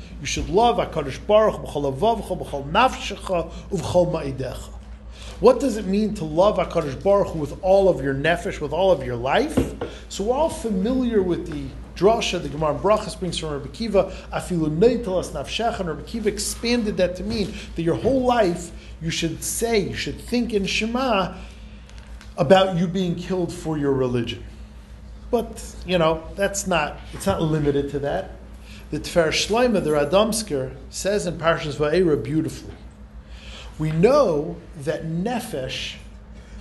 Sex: male